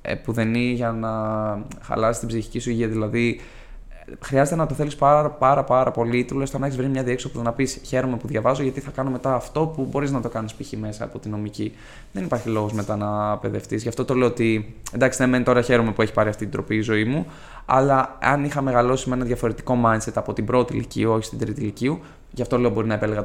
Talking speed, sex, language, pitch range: 230 wpm, male, Greek, 110-130 Hz